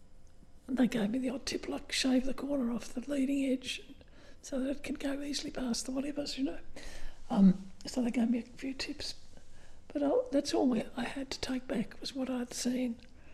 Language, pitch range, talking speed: English, 235-265 Hz, 220 wpm